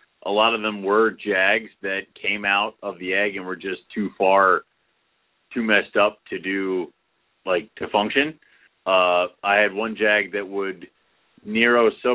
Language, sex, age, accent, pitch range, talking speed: English, male, 30-49, American, 95-110 Hz, 170 wpm